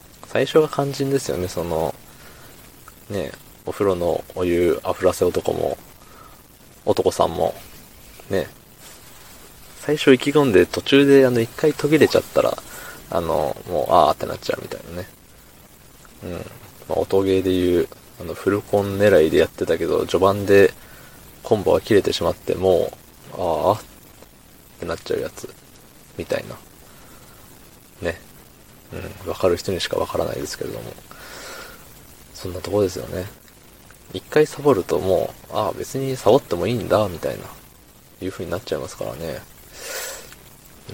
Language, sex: Japanese, male